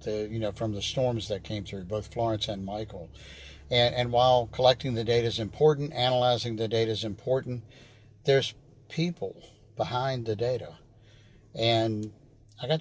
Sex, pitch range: male, 105-125 Hz